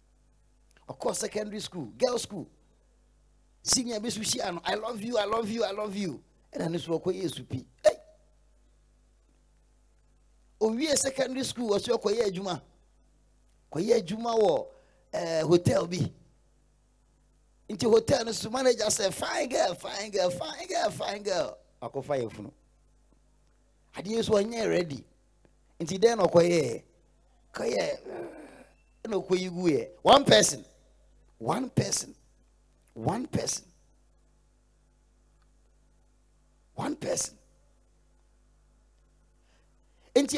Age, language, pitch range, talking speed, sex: 30-49, English, 175-235 Hz, 110 wpm, male